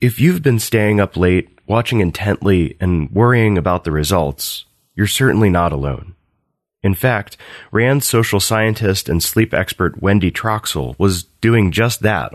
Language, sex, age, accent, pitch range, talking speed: English, male, 30-49, American, 90-120 Hz, 150 wpm